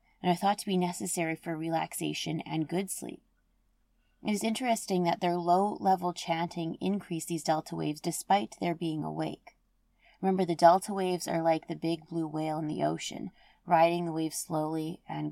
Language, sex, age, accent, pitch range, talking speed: English, female, 30-49, American, 165-190 Hz, 170 wpm